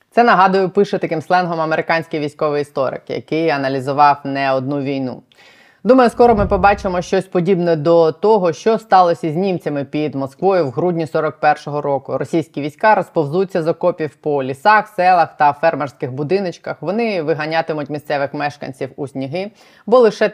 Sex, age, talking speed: female, 20-39, 150 wpm